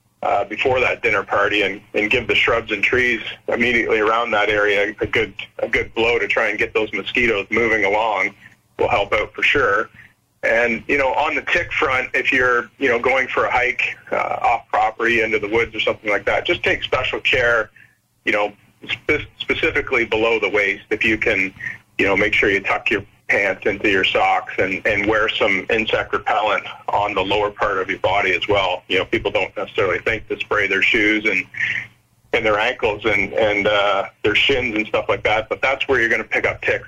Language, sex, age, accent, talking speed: English, male, 40-59, American, 210 wpm